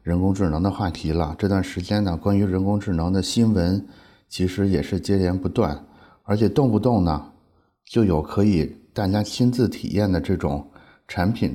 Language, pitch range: Chinese, 85-105 Hz